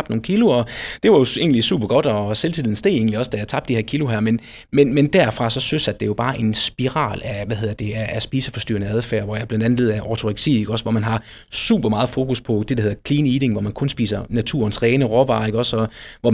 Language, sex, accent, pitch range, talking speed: Danish, male, native, 110-140 Hz, 250 wpm